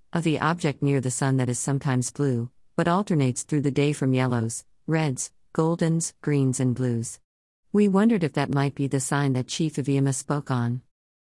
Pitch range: 125-155 Hz